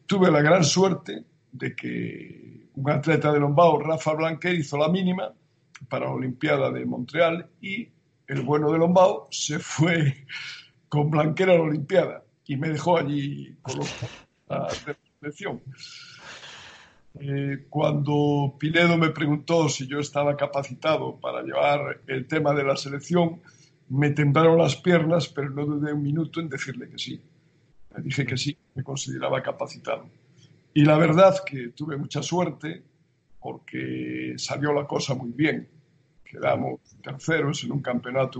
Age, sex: 60-79, male